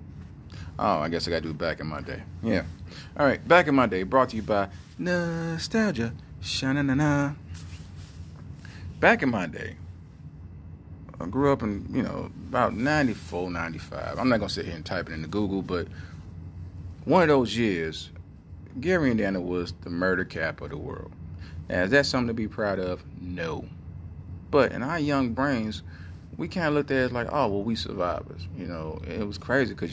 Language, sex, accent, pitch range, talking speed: English, male, American, 85-110 Hz, 190 wpm